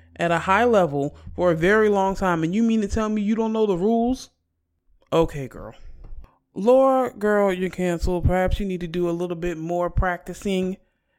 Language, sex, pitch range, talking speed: English, male, 160-245 Hz, 195 wpm